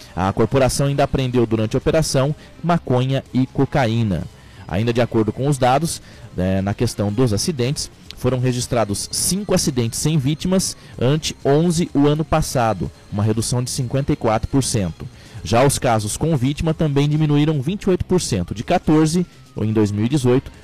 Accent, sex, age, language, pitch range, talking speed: Brazilian, male, 20-39, Portuguese, 115-145 Hz, 135 wpm